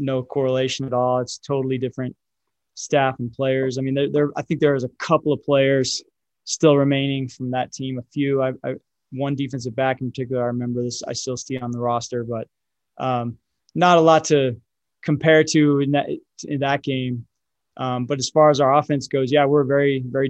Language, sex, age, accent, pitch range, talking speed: English, male, 20-39, American, 125-145 Hz, 205 wpm